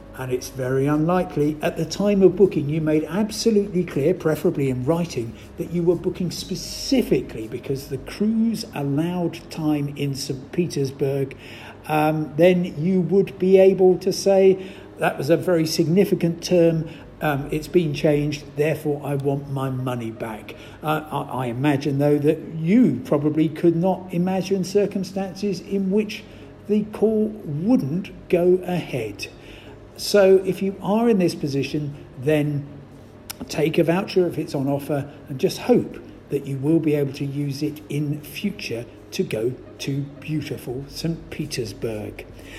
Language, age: English, 50-69